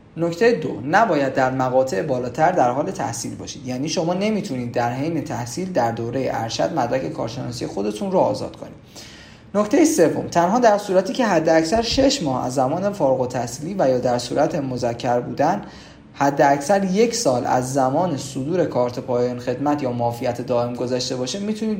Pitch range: 125-175 Hz